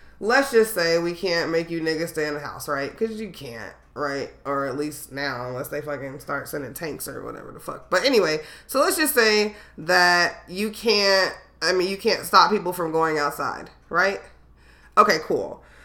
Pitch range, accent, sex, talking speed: 150-200 Hz, American, female, 195 wpm